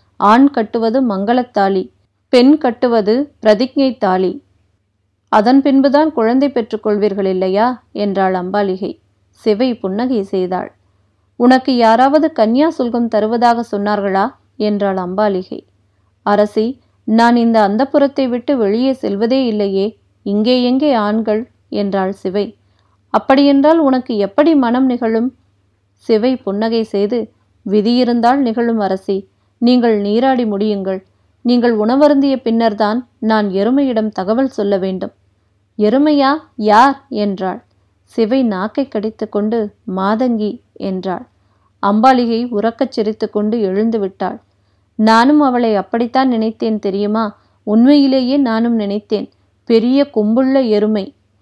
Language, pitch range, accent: Tamil, 195-250 Hz, native